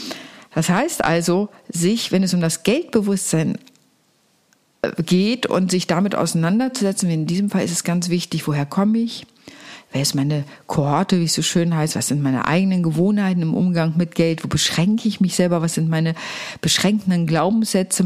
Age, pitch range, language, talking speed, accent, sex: 50-69, 170-210 Hz, German, 175 wpm, German, female